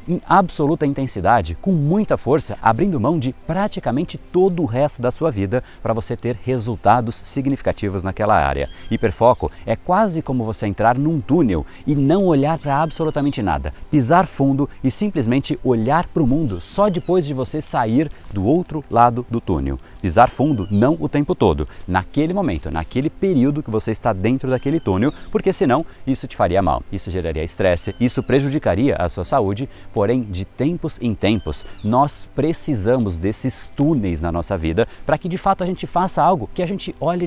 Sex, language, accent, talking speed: male, Portuguese, Brazilian, 175 wpm